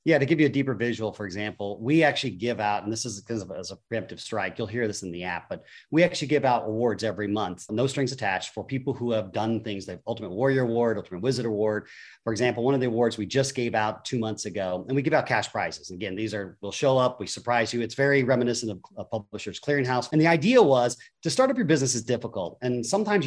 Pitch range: 110-140 Hz